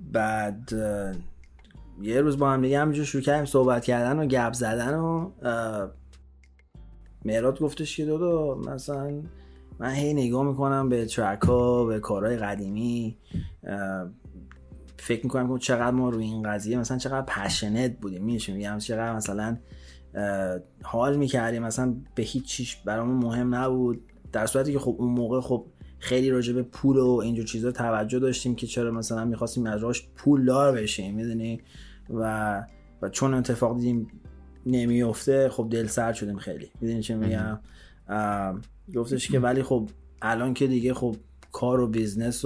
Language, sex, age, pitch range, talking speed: Persian, male, 30-49, 105-125 Hz, 145 wpm